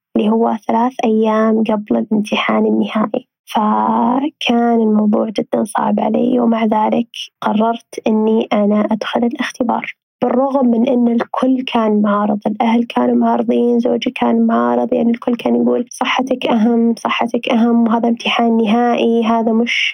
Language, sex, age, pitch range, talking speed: Arabic, female, 20-39, 225-255 Hz, 130 wpm